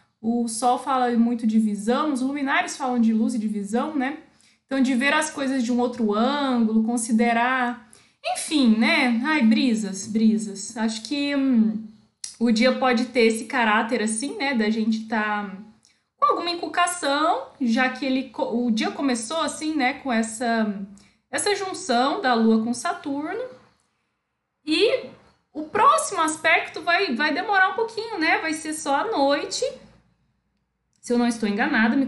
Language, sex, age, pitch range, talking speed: Portuguese, female, 20-39, 230-310 Hz, 160 wpm